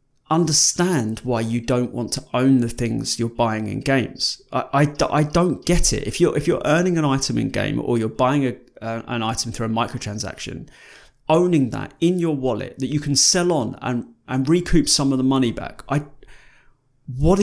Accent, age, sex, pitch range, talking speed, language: British, 30-49, male, 120-150 Hz, 200 wpm, English